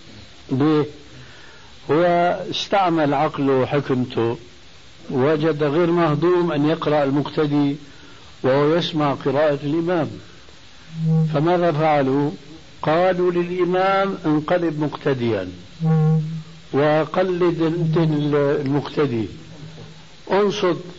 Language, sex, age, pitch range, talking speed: Arabic, male, 60-79, 125-160 Hz, 70 wpm